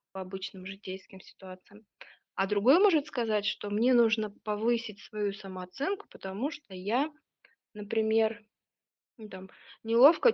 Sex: female